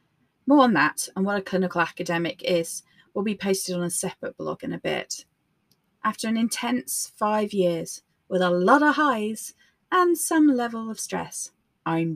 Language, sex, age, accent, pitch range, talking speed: English, female, 30-49, British, 175-215 Hz, 175 wpm